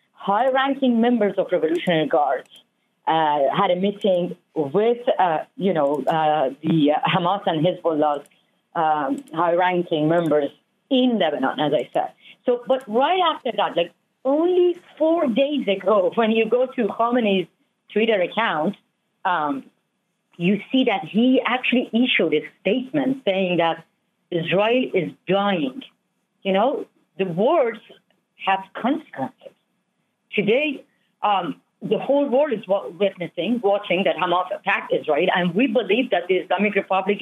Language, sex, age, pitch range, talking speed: English, female, 40-59, 180-240 Hz, 130 wpm